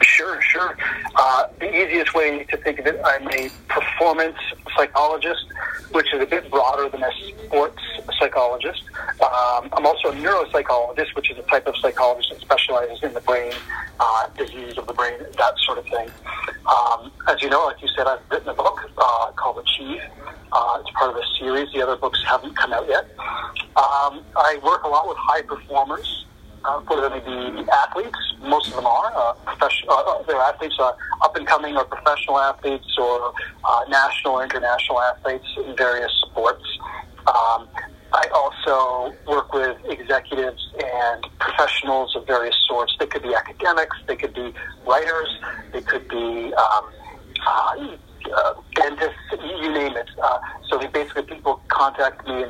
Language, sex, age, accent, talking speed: English, male, 40-59, American, 165 wpm